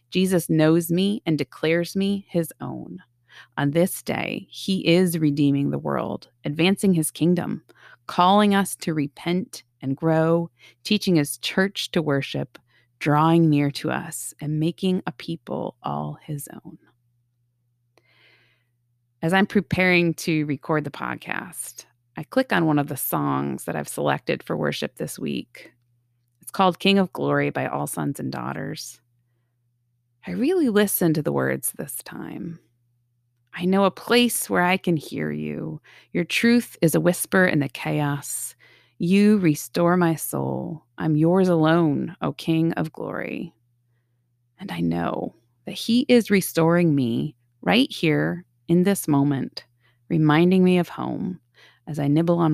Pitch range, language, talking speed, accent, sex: 120-180 Hz, English, 145 wpm, American, female